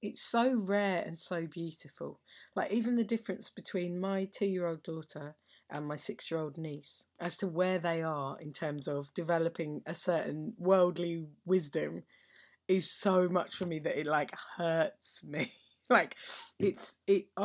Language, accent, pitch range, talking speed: English, British, 160-200 Hz, 150 wpm